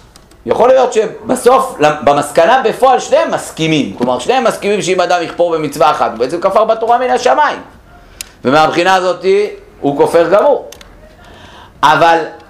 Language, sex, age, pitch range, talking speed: Hebrew, male, 50-69, 135-225 Hz, 130 wpm